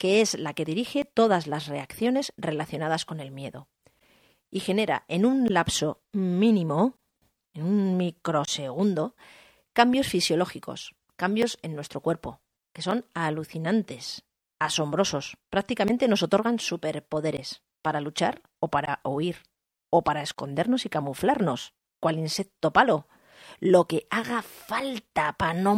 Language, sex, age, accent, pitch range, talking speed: Spanish, female, 40-59, Spanish, 155-220 Hz, 125 wpm